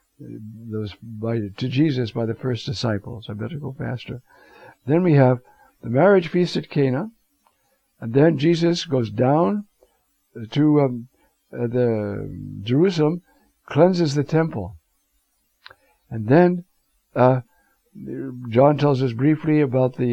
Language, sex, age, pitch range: English, male, 60-79, 115-140 Hz